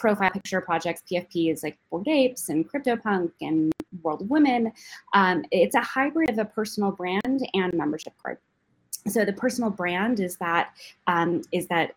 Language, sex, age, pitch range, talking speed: English, female, 20-39, 165-215 Hz, 160 wpm